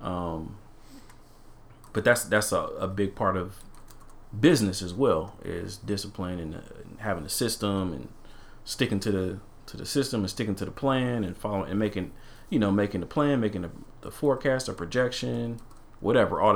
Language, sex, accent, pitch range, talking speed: English, male, American, 100-125 Hz, 175 wpm